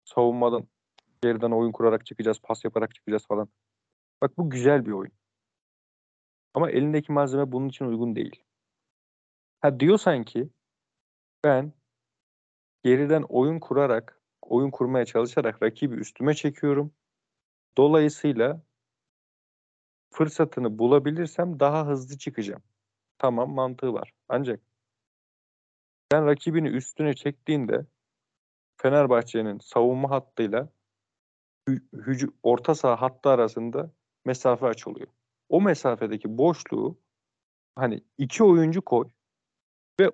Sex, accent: male, native